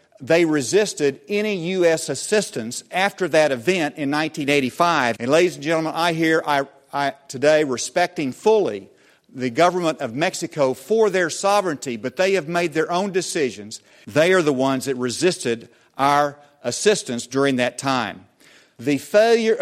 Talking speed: 140 wpm